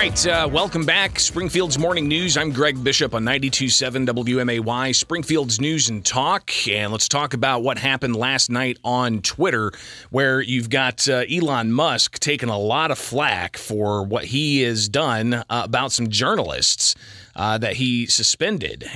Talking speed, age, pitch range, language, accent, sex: 165 wpm, 30-49, 110-135 Hz, English, American, male